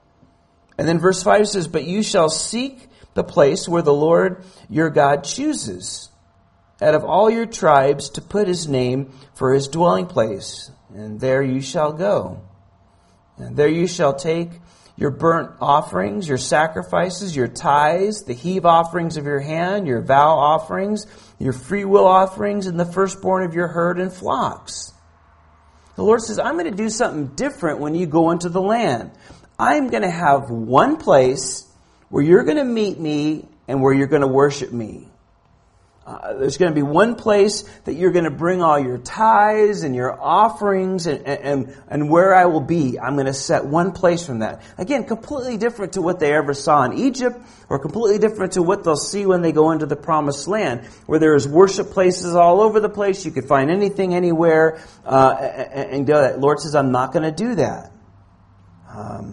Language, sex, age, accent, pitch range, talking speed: Finnish, male, 40-59, American, 130-190 Hz, 190 wpm